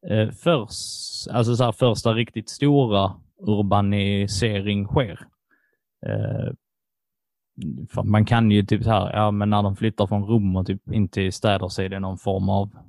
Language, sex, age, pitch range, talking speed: Swedish, male, 20-39, 100-125 Hz, 145 wpm